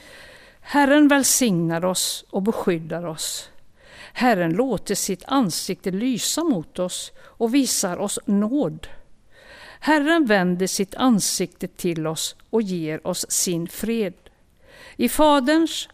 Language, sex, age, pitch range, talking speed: Swedish, female, 60-79, 180-245 Hz, 115 wpm